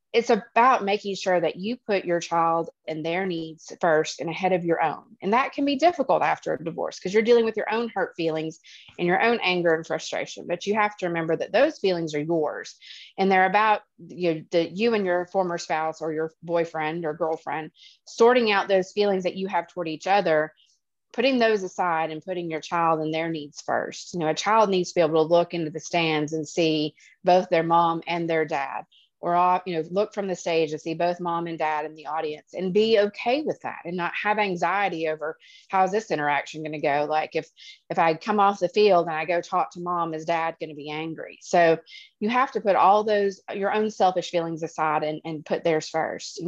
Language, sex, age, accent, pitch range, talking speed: English, female, 30-49, American, 160-195 Hz, 230 wpm